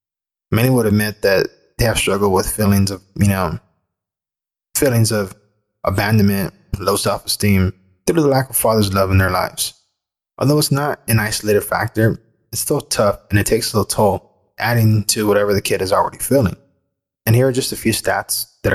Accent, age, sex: American, 20-39, male